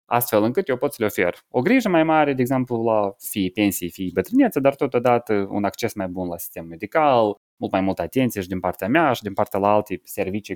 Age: 20-39